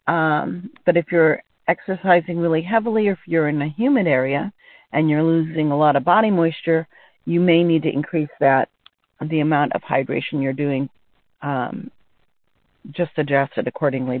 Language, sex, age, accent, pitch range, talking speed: English, female, 50-69, American, 155-190 Hz, 165 wpm